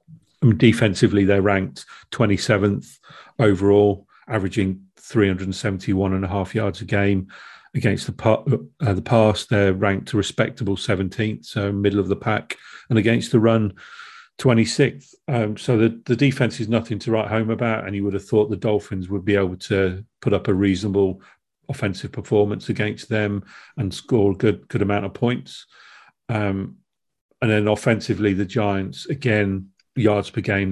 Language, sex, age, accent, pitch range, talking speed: English, male, 40-59, British, 100-115 Hz, 160 wpm